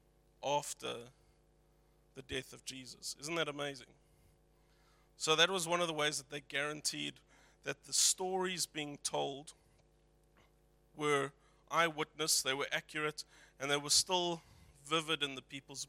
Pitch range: 140-155 Hz